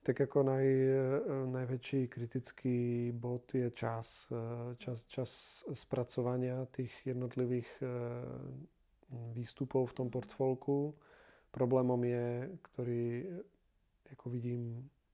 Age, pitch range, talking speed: 40-59, 120-135 Hz, 85 wpm